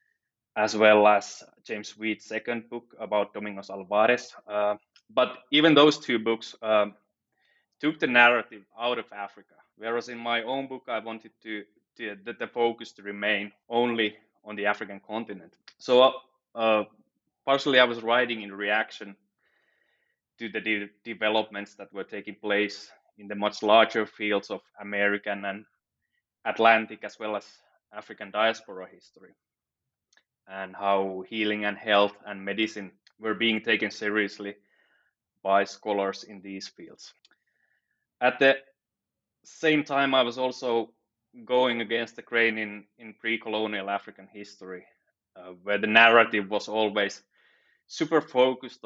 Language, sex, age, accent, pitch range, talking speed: English, male, 20-39, Finnish, 100-115 Hz, 140 wpm